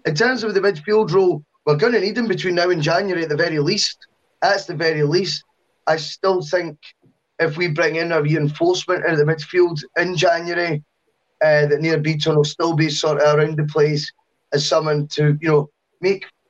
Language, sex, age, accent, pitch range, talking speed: English, male, 10-29, British, 150-190 Hz, 200 wpm